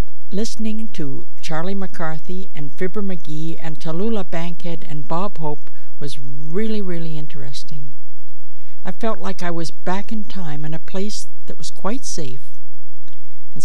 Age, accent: 60-79, American